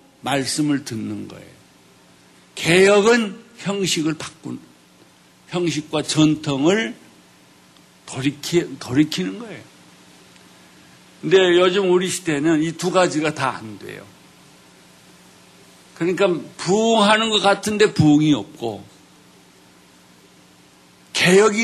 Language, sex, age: Korean, male, 60-79